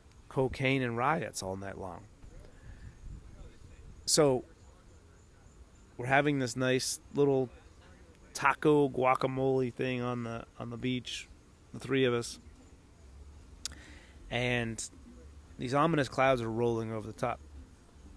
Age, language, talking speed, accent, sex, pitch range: 30-49, English, 110 wpm, American, male, 80-130 Hz